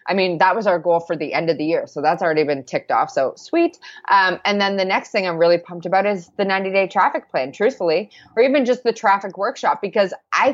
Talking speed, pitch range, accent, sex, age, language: 250 wpm, 165-215 Hz, American, female, 20-39, English